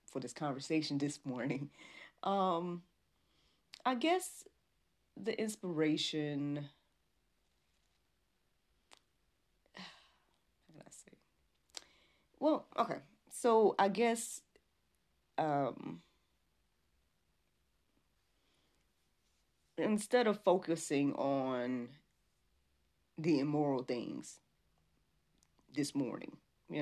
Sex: female